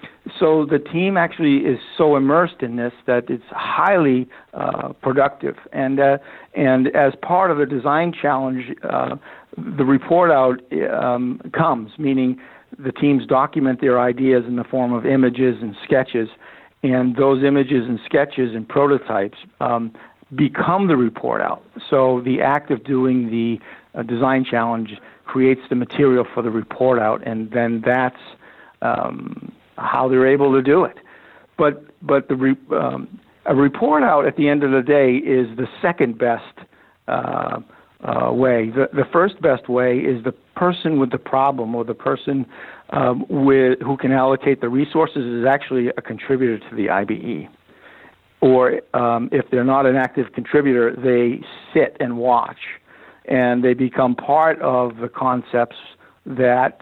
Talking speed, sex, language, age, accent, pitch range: 160 wpm, male, English, 50-69, American, 125-140 Hz